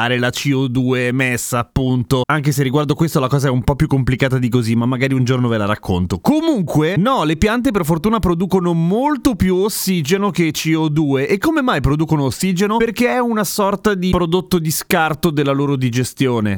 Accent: native